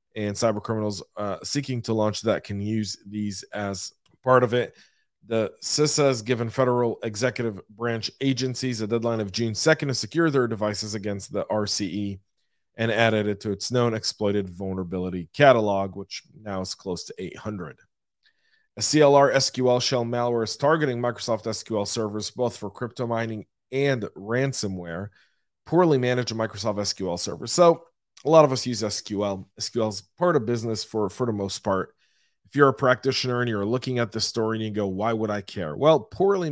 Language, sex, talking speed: English, male, 175 wpm